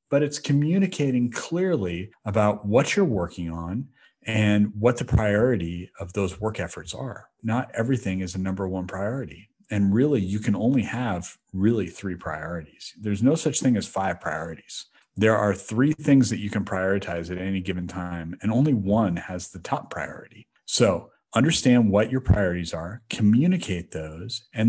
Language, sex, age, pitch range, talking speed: English, male, 40-59, 95-120 Hz, 170 wpm